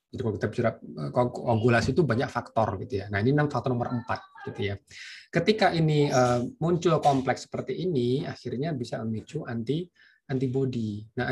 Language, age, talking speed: Indonesian, 20-39, 150 wpm